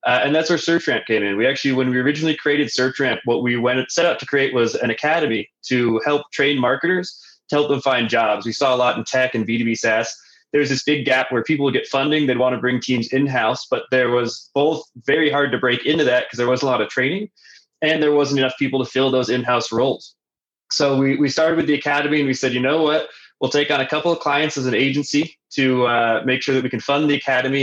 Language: English